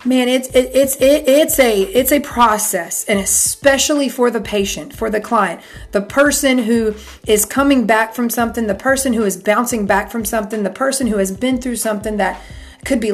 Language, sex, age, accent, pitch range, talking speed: English, female, 40-59, American, 205-270 Hz, 200 wpm